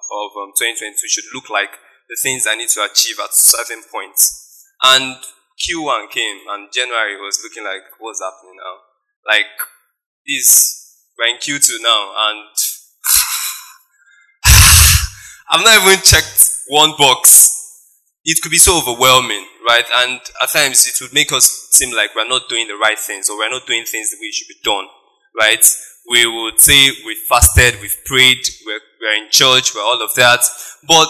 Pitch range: 120-165 Hz